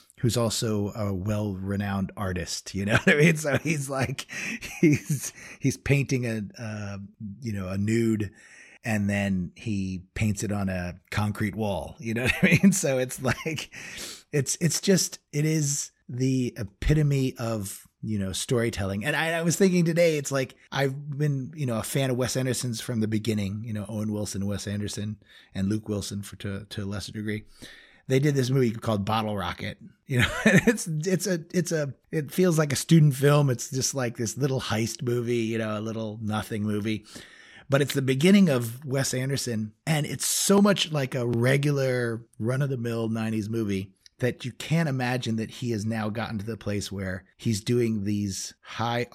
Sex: male